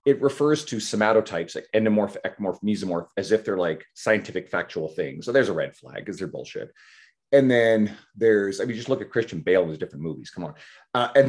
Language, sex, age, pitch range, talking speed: English, male, 30-49, 95-125 Hz, 220 wpm